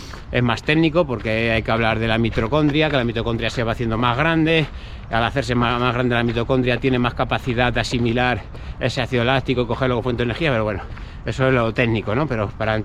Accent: Spanish